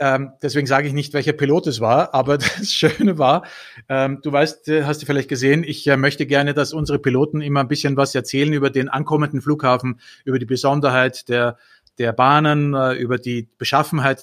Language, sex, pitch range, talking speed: German, male, 145-190 Hz, 175 wpm